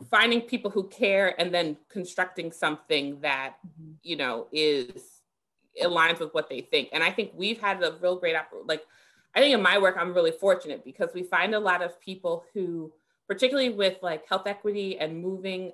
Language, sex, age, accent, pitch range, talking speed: English, female, 30-49, American, 160-200 Hz, 190 wpm